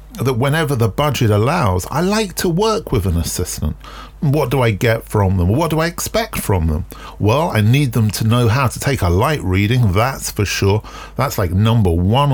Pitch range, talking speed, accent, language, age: 100-135 Hz, 210 wpm, British, English, 40-59